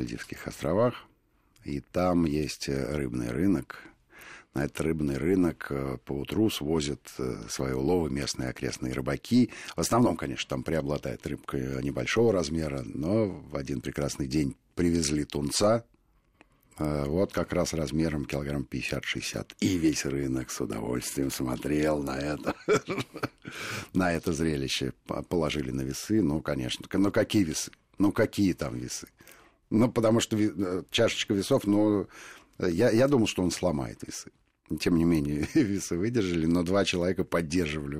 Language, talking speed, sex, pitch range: Russian, 135 wpm, male, 70-100 Hz